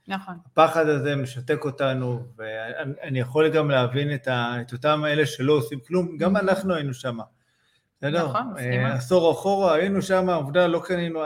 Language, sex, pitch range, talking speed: Hebrew, male, 130-160 Hz, 150 wpm